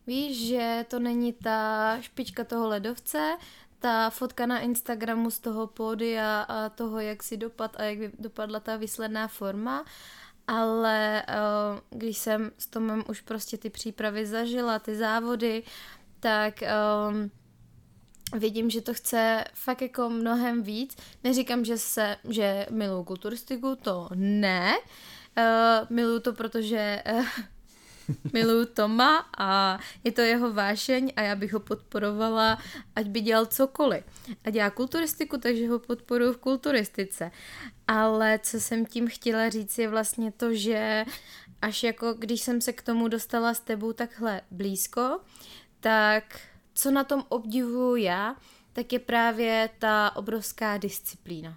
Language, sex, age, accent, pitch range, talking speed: Czech, female, 20-39, native, 215-240 Hz, 140 wpm